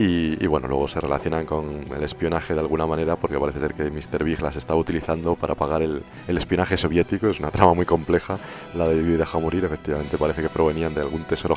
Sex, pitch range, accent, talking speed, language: male, 80-90 Hz, Spanish, 235 wpm, Spanish